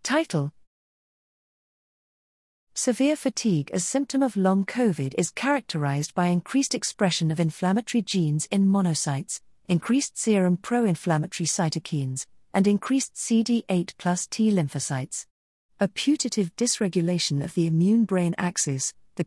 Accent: British